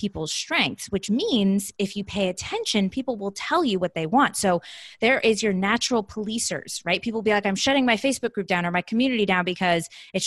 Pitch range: 175-220 Hz